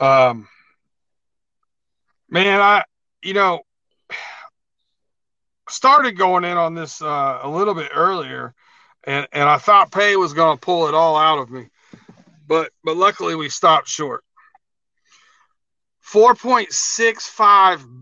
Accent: American